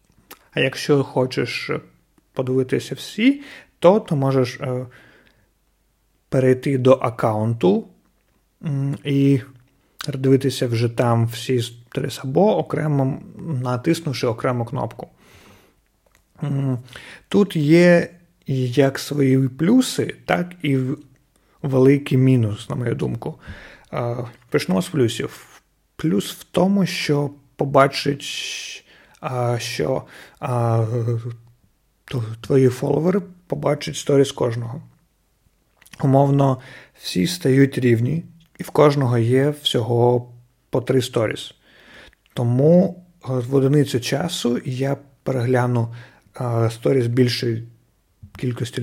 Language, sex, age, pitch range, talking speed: Ukrainian, male, 30-49, 125-150 Hz, 85 wpm